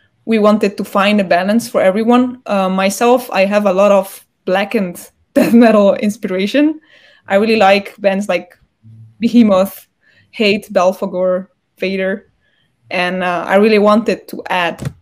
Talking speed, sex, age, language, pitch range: 140 wpm, female, 20-39, Portuguese, 190-230 Hz